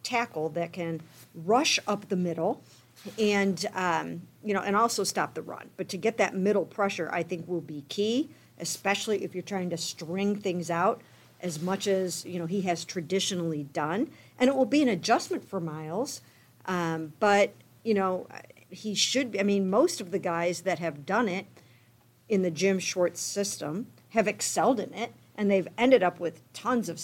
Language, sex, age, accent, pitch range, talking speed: English, female, 50-69, American, 170-210 Hz, 185 wpm